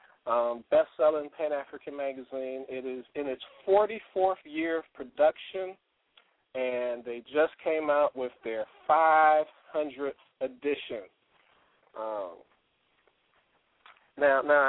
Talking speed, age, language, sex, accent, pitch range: 115 wpm, 40-59, English, male, American, 130-160 Hz